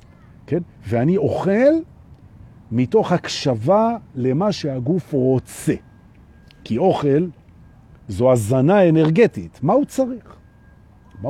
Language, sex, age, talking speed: Hebrew, male, 50-69, 90 wpm